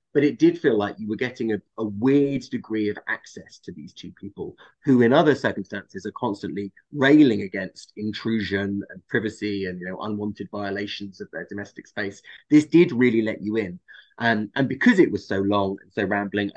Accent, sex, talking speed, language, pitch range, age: British, male, 195 wpm, English, 105-145 Hz, 30-49